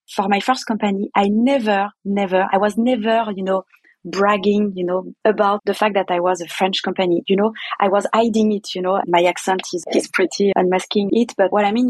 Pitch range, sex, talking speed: 190-240 Hz, female, 215 wpm